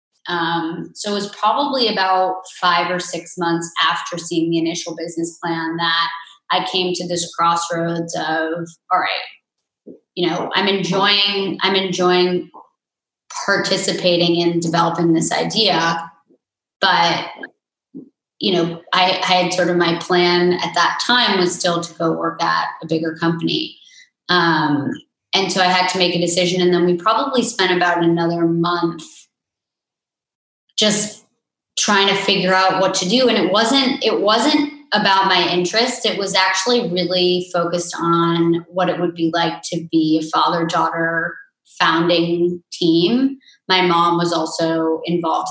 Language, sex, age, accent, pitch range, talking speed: English, female, 20-39, American, 170-190 Hz, 150 wpm